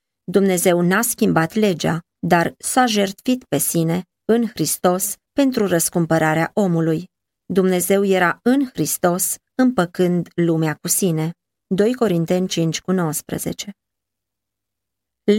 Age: 20-39